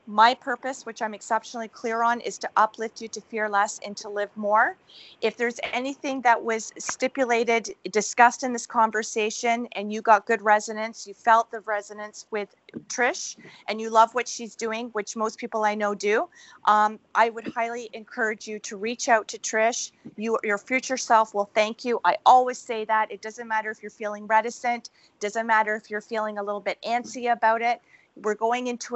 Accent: American